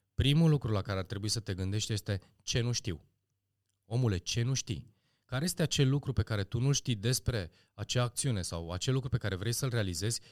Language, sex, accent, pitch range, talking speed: Romanian, male, native, 100-130 Hz, 215 wpm